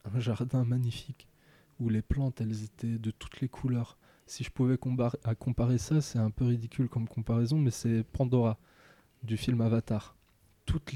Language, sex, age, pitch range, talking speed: French, male, 20-39, 115-130 Hz, 165 wpm